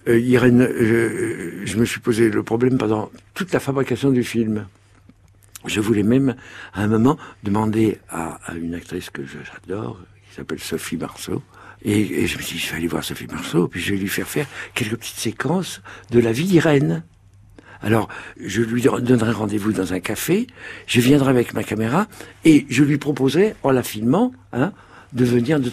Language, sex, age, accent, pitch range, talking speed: French, male, 60-79, French, 100-135 Hz, 190 wpm